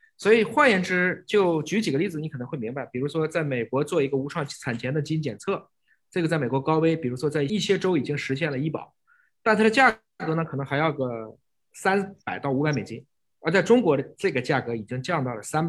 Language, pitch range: Chinese, 130-190 Hz